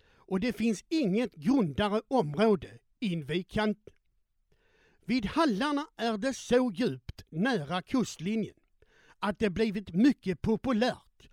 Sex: male